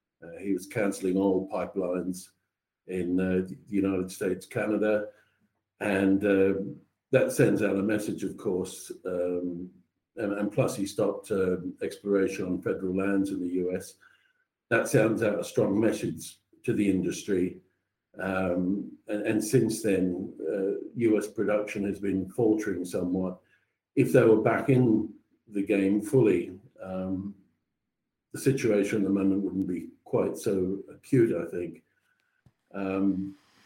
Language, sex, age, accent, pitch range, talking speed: English, male, 50-69, British, 95-115 Hz, 140 wpm